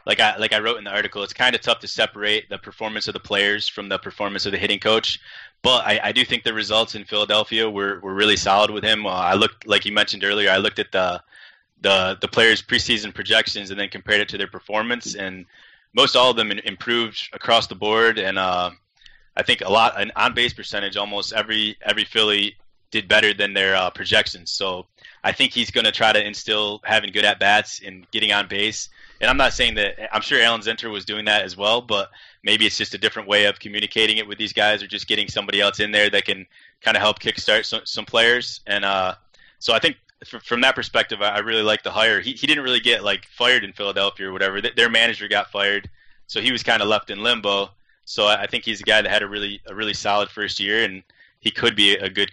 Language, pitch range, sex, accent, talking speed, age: English, 100-110 Hz, male, American, 240 wpm, 20-39